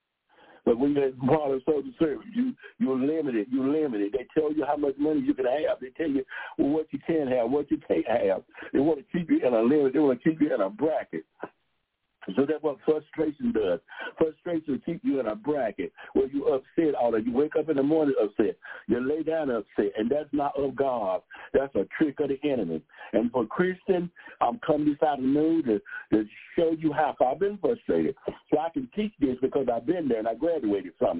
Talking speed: 220 wpm